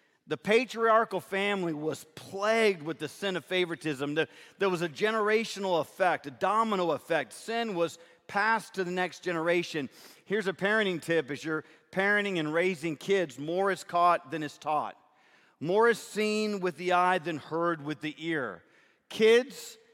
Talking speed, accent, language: 160 wpm, American, English